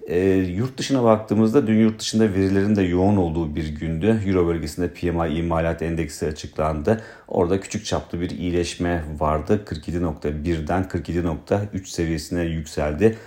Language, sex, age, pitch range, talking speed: Turkish, male, 40-59, 80-100 Hz, 125 wpm